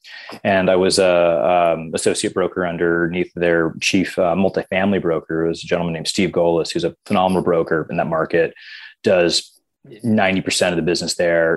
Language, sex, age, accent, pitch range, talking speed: English, male, 30-49, American, 90-105 Hz, 170 wpm